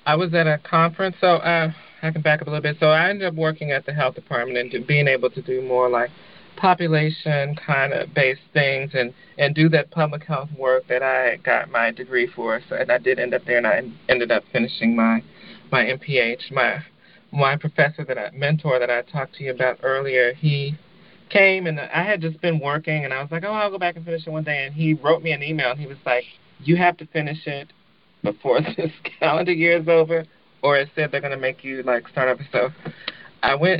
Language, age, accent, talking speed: English, 30-49, American, 235 wpm